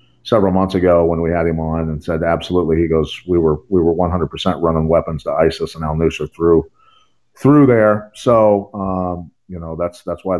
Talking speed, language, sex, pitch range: 195 wpm, English, male, 85-100 Hz